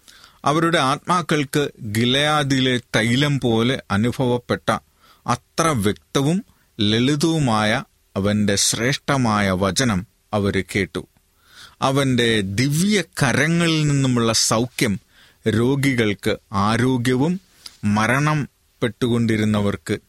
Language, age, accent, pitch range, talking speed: Malayalam, 30-49, native, 105-140 Hz, 70 wpm